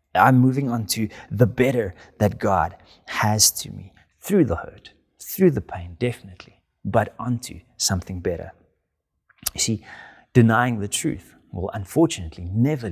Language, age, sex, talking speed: English, 30-49, male, 140 wpm